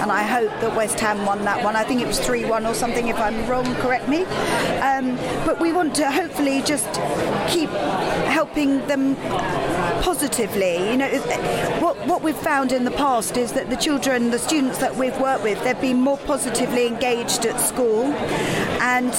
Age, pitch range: 40-59, 230-270 Hz